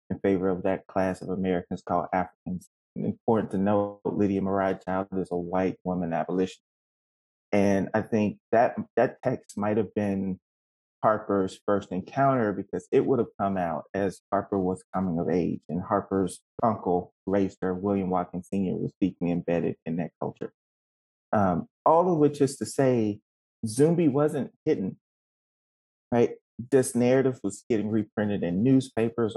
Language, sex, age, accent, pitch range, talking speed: English, male, 30-49, American, 95-115 Hz, 155 wpm